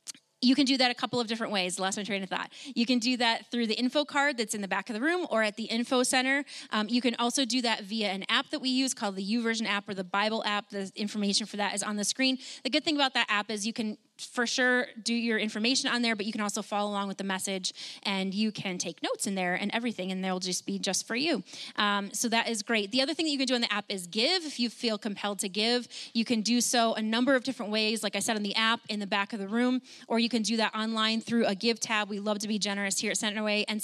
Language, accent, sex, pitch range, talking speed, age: English, American, female, 200-245 Hz, 295 wpm, 20-39